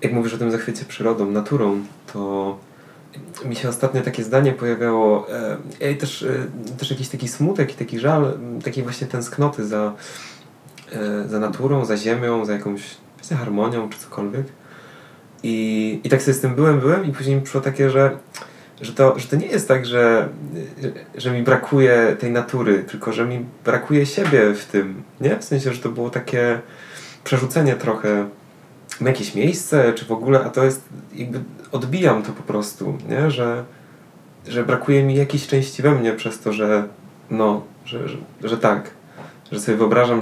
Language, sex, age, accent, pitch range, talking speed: Polish, male, 20-39, native, 110-135 Hz, 165 wpm